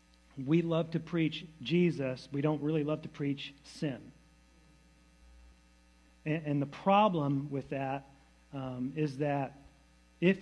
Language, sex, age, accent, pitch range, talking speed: English, male, 40-59, American, 140-170 Hz, 125 wpm